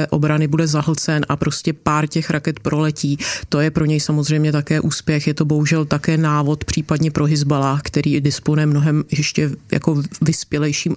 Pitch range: 145-155 Hz